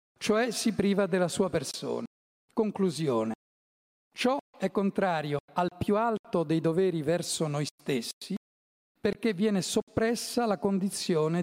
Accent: native